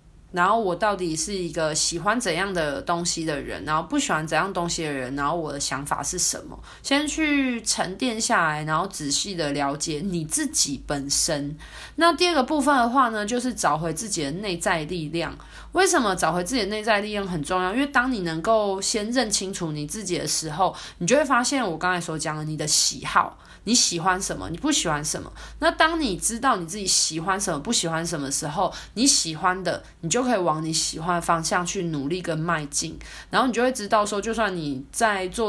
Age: 20-39